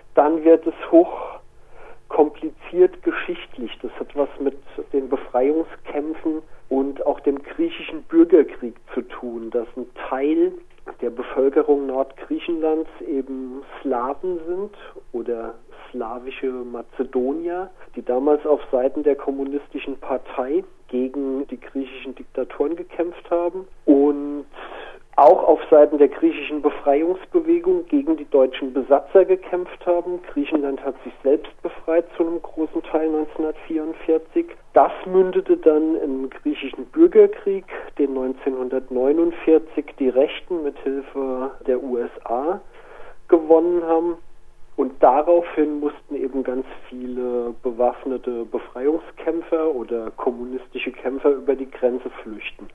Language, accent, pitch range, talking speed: German, German, 130-170 Hz, 110 wpm